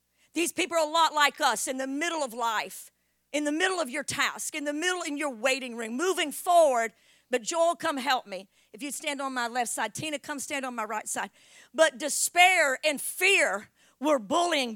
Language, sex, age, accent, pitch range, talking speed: English, female, 50-69, American, 230-330 Hz, 210 wpm